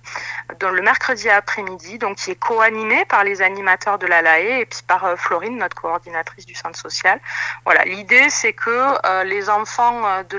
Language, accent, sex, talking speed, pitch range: French, French, female, 180 wpm, 190-230 Hz